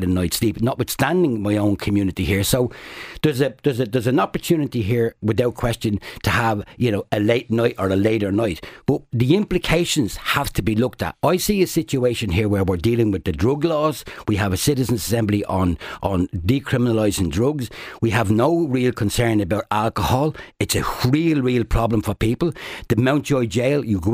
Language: English